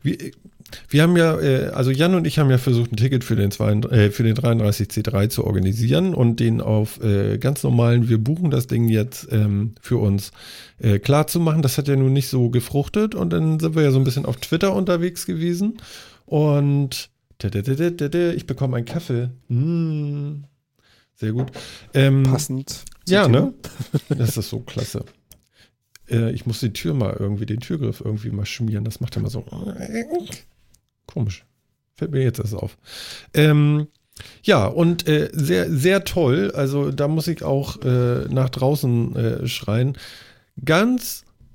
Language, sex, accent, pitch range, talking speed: German, male, German, 110-145 Hz, 160 wpm